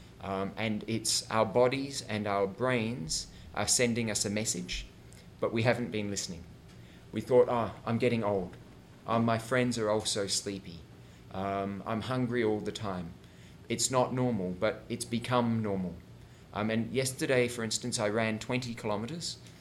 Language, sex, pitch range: English, male, 100-120 Hz